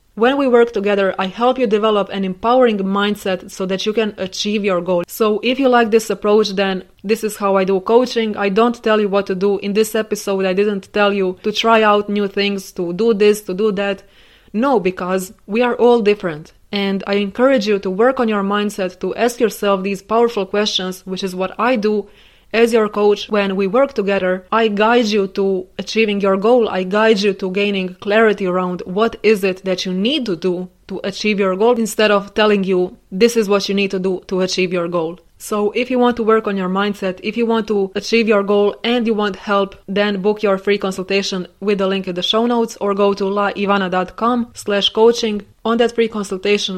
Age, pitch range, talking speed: 20-39, 190-220 Hz, 220 wpm